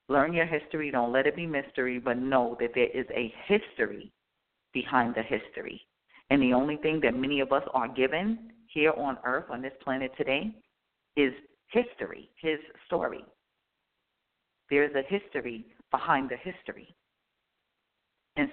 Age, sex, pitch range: 40-59, female, 125-155 Hz